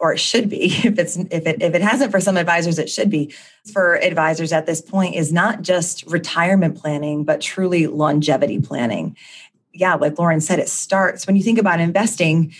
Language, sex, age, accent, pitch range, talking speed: English, female, 30-49, American, 160-200 Hz, 200 wpm